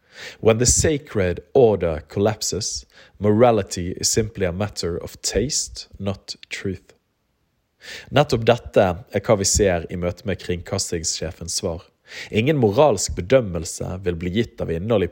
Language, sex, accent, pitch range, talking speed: English, male, Norwegian, 90-110 Hz, 135 wpm